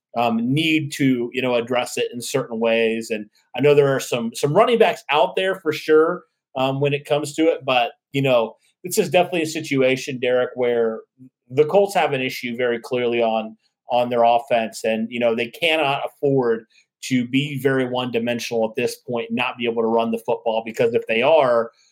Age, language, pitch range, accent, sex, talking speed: 30-49, English, 120-150 Hz, American, male, 205 wpm